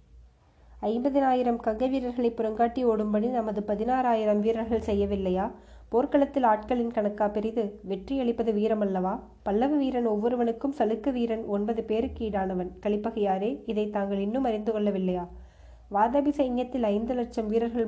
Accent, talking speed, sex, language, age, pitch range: native, 110 wpm, female, Tamil, 20-39, 205-235 Hz